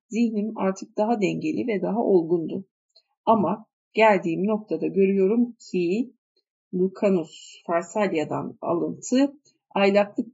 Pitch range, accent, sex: 185-230 Hz, native, female